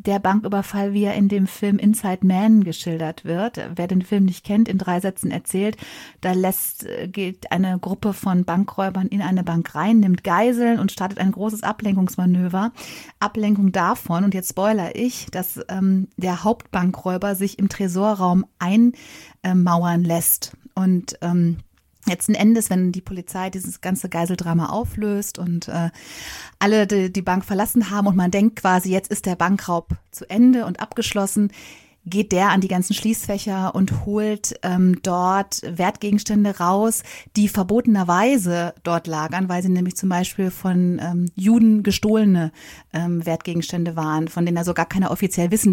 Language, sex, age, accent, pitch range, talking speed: German, female, 30-49, German, 180-210 Hz, 160 wpm